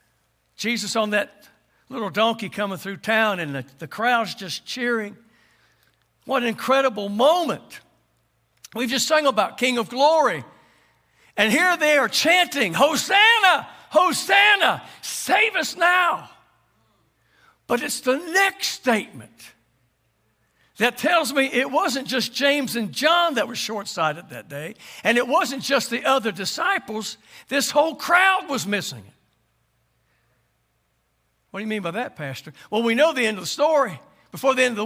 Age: 60-79